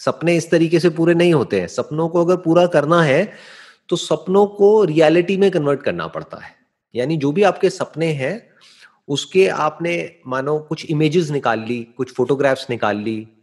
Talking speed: 180 wpm